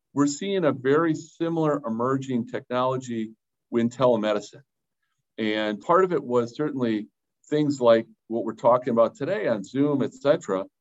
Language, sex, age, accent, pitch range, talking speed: English, male, 50-69, American, 105-135 Hz, 145 wpm